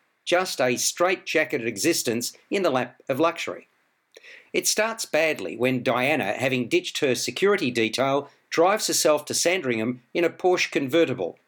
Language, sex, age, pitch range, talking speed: English, male, 50-69, 130-175 Hz, 140 wpm